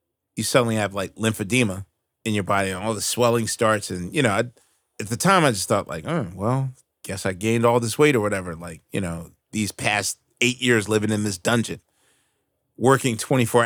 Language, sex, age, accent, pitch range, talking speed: English, male, 30-49, American, 100-120 Hz, 205 wpm